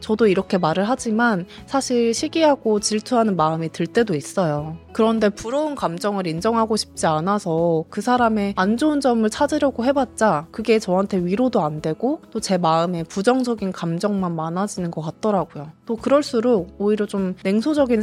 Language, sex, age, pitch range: Korean, female, 20-39, 175-240 Hz